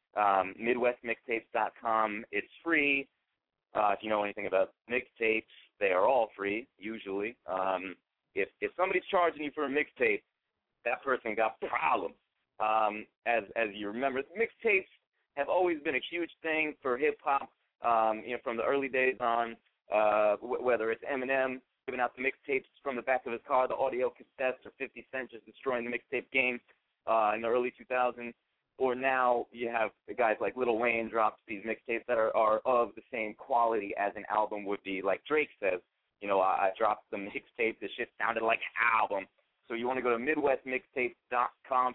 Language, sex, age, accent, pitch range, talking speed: English, male, 30-49, American, 110-130 Hz, 185 wpm